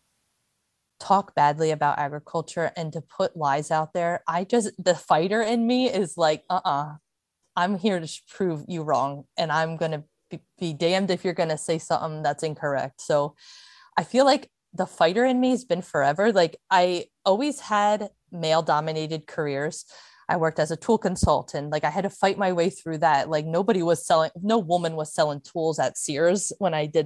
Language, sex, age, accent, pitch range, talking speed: English, female, 20-39, American, 155-195 Hz, 185 wpm